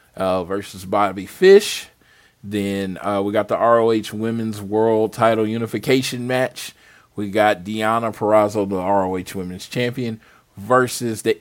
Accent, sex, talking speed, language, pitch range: American, male, 130 wpm, English, 95-115 Hz